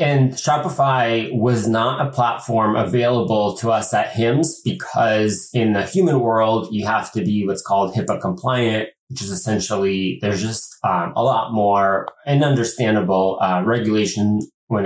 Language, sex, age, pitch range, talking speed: English, male, 30-49, 95-120 Hz, 155 wpm